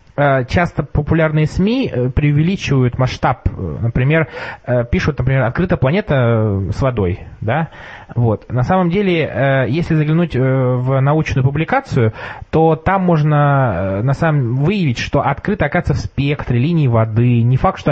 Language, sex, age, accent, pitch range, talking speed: Russian, male, 20-39, native, 125-160 Hz, 115 wpm